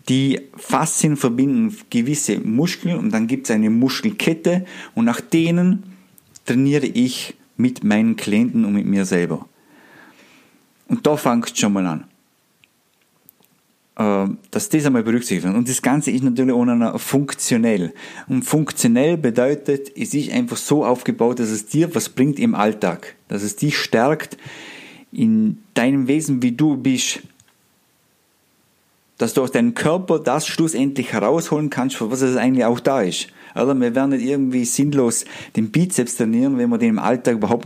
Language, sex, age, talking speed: German, male, 50-69, 160 wpm